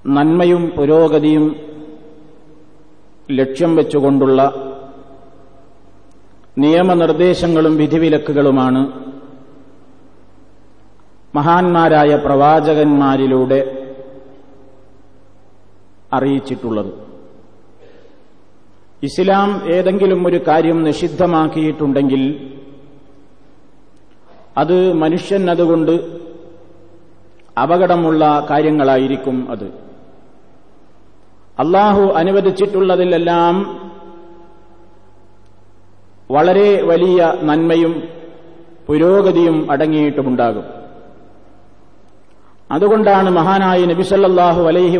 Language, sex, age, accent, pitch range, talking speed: Malayalam, male, 50-69, native, 135-170 Hz, 40 wpm